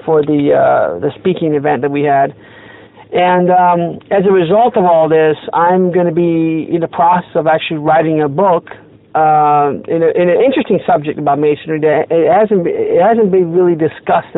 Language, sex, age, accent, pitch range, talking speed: English, male, 40-59, American, 150-180 Hz, 195 wpm